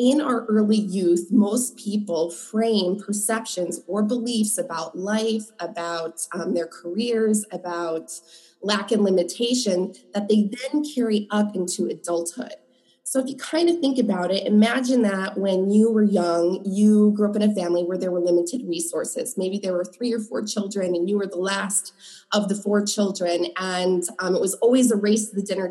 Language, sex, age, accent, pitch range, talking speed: English, female, 20-39, American, 185-240 Hz, 180 wpm